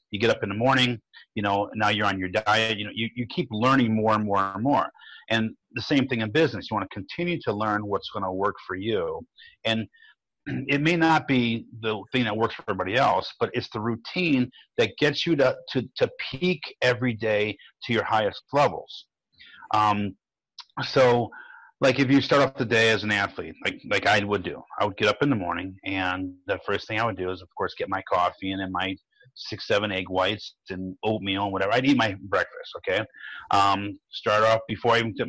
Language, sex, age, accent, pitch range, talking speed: English, male, 40-59, American, 100-130 Hz, 225 wpm